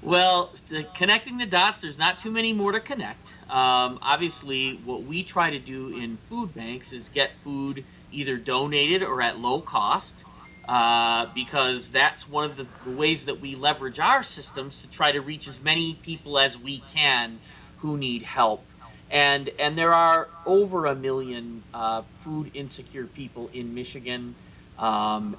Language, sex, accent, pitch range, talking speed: English, male, American, 125-165 Hz, 165 wpm